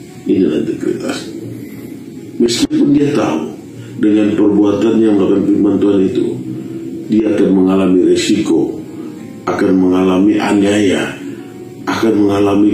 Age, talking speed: 50-69, 100 wpm